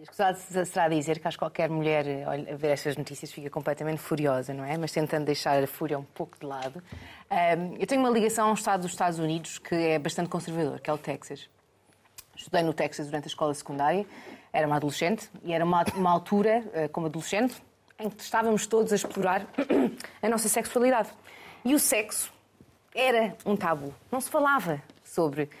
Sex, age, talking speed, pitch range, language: female, 30-49, 185 wpm, 155-225 Hz, Portuguese